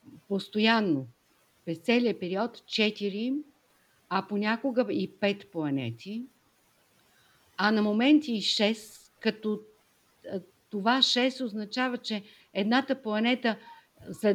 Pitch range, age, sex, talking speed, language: 180-245 Hz, 50-69, female, 95 wpm, Bulgarian